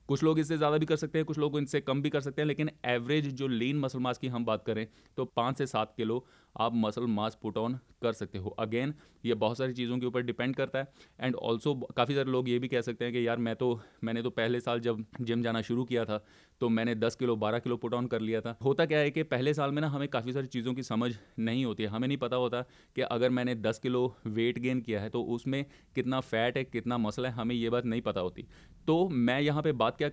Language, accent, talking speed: Hindi, native, 265 wpm